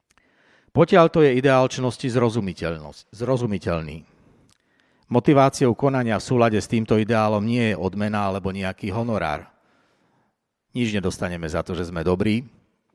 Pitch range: 95-120 Hz